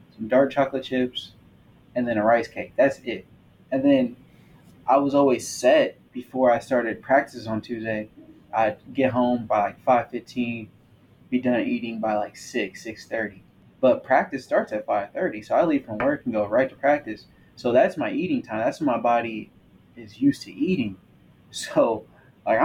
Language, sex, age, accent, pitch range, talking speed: English, male, 20-39, American, 115-135 Hz, 180 wpm